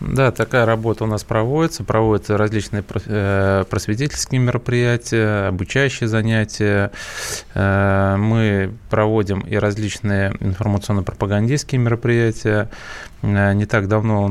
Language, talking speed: Russian, 90 wpm